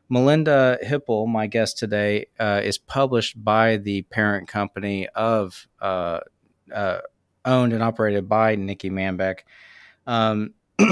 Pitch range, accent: 100-125 Hz, American